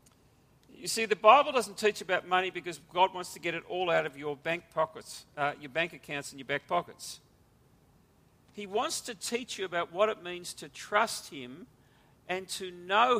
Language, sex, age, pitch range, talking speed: English, male, 50-69, 150-200 Hz, 195 wpm